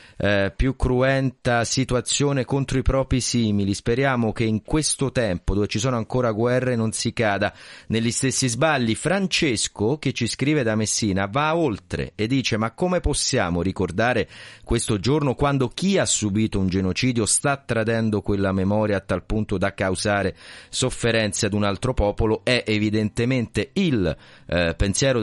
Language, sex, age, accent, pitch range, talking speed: Italian, male, 30-49, native, 95-120 Hz, 155 wpm